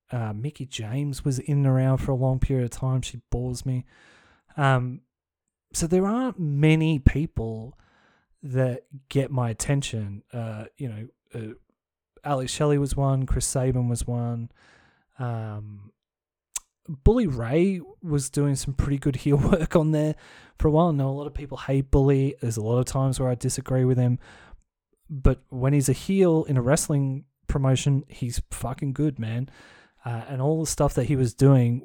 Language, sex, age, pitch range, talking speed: English, male, 20-39, 120-145 Hz, 175 wpm